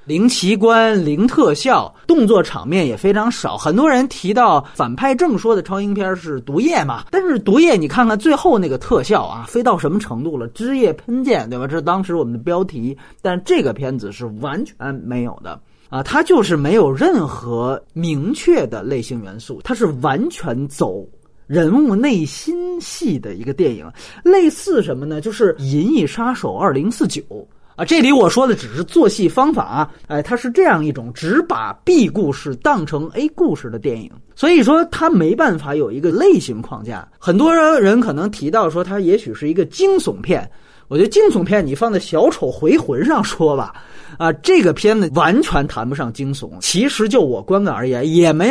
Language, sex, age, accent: Chinese, male, 30-49, native